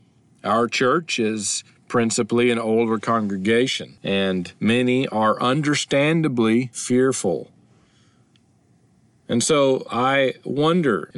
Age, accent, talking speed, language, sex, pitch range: 40-59, American, 90 wpm, English, male, 105-130 Hz